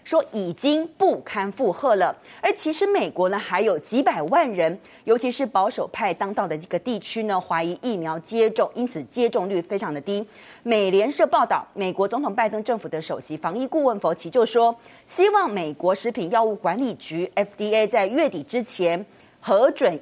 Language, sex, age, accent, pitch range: Chinese, female, 30-49, native, 185-265 Hz